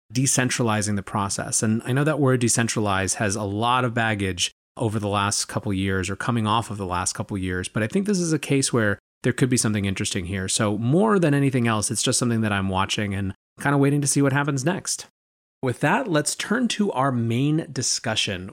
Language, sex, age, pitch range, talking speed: English, male, 30-49, 105-140 Hz, 230 wpm